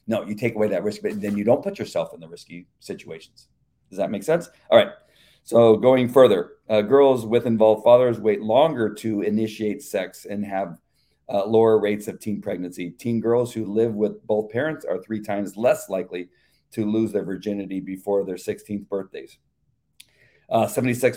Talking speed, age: 180 wpm, 40-59